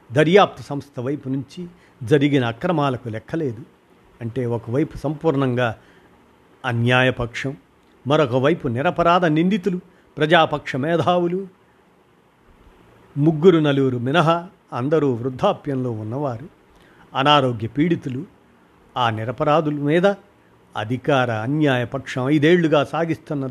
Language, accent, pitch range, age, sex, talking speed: Telugu, native, 120-155 Hz, 50-69, male, 80 wpm